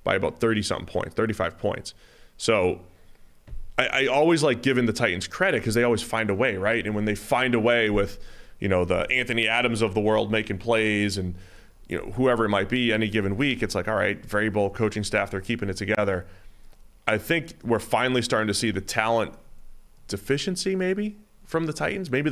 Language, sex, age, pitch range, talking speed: English, male, 20-39, 100-120 Hz, 200 wpm